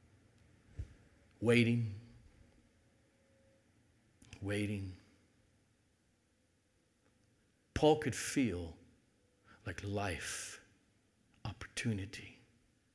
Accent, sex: American, male